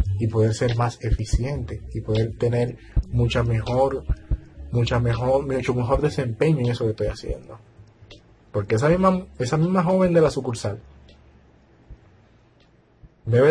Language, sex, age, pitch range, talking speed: Spanish, male, 30-49, 105-140 Hz, 130 wpm